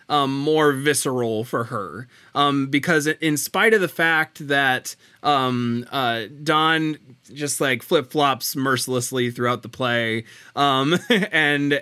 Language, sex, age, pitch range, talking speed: English, male, 20-39, 120-150 Hz, 125 wpm